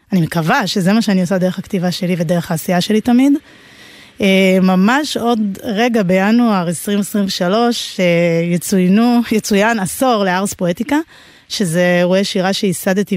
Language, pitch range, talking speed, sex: Hebrew, 185-215 Hz, 125 wpm, female